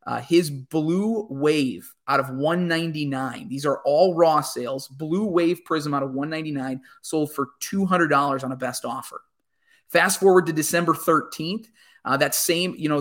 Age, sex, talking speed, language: 20-39, male, 190 wpm, English